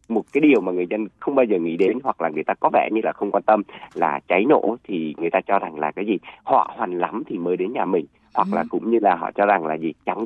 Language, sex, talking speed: Vietnamese, male, 305 wpm